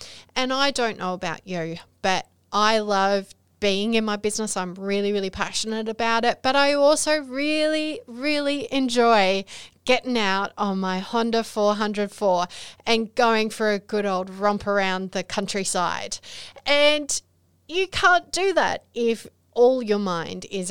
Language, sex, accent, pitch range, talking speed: English, female, Australian, 185-255 Hz, 150 wpm